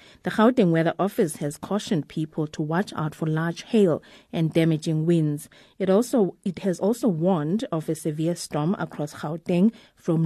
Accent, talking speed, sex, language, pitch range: South African, 170 wpm, female, English, 155-190 Hz